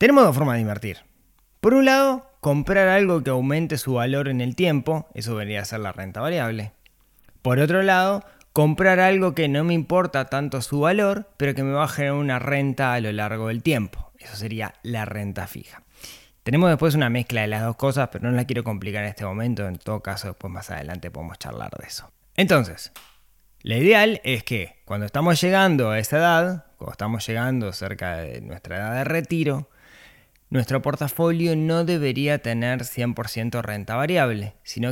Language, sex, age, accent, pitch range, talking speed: Spanish, male, 20-39, Argentinian, 105-145 Hz, 185 wpm